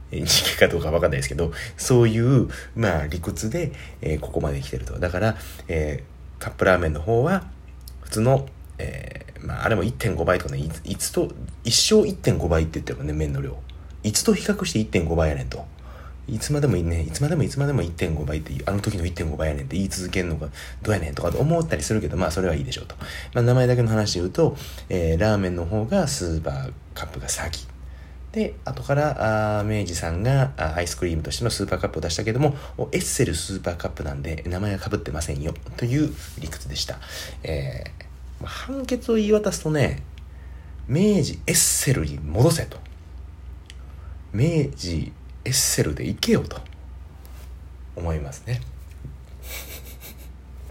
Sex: male